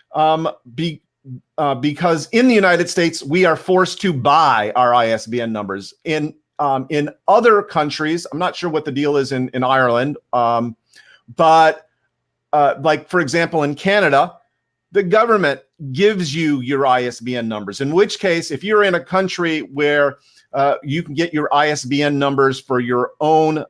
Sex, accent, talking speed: male, American, 165 wpm